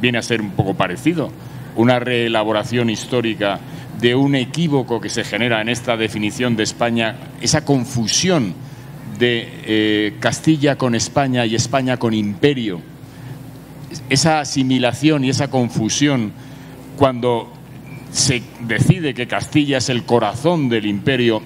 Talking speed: 130 wpm